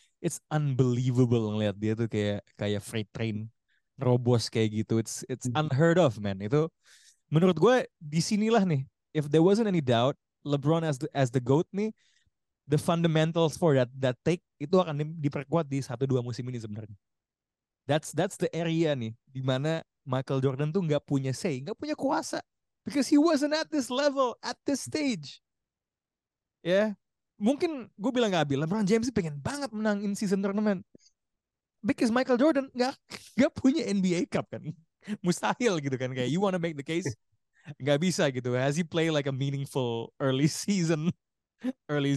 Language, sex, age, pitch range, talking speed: Indonesian, male, 20-39, 130-190 Hz, 170 wpm